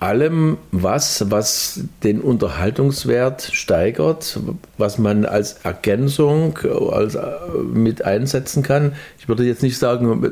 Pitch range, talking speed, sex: 90-120 Hz, 110 wpm, male